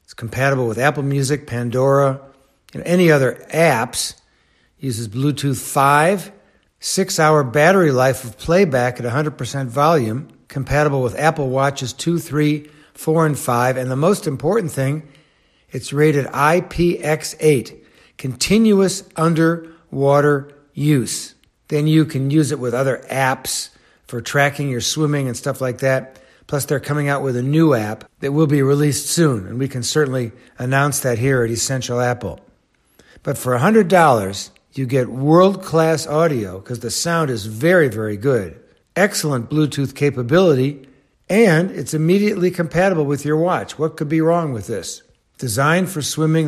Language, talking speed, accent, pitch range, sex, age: English, 145 wpm, American, 130-160 Hz, male, 60-79